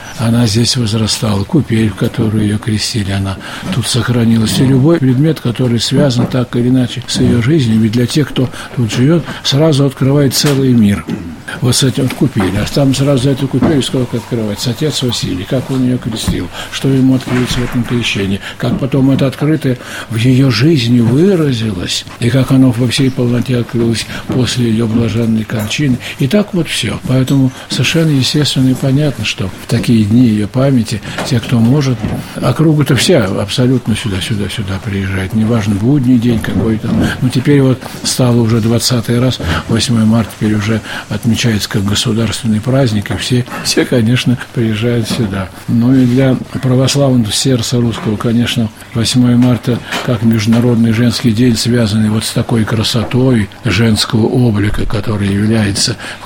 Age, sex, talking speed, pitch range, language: 60-79, male, 160 wpm, 105-130 Hz, Russian